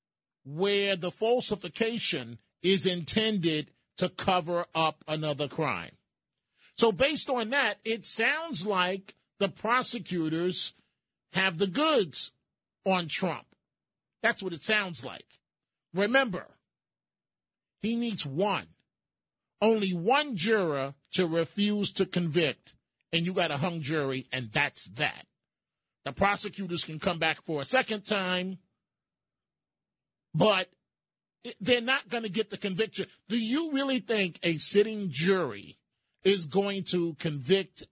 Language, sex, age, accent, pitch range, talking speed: English, male, 40-59, American, 155-205 Hz, 120 wpm